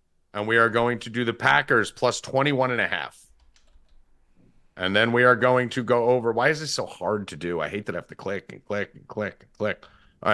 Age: 40-59